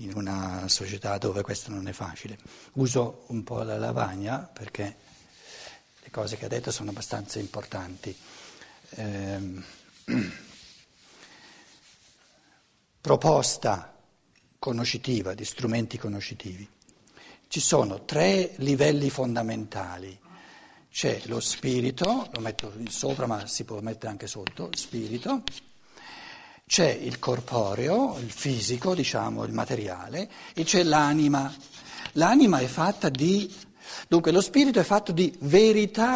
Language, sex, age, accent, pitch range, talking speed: Italian, male, 60-79, native, 110-185 Hz, 115 wpm